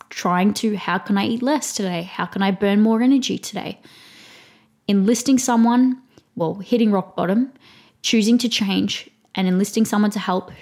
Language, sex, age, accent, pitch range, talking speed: English, female, 20-39, Australian, 190-235 Hz, 165 wpm